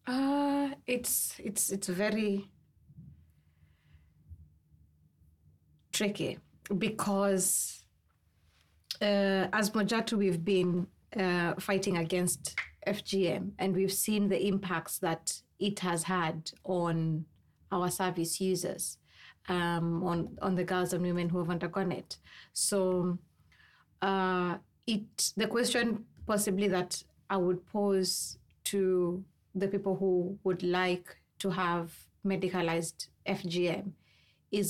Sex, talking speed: female, 105 wpm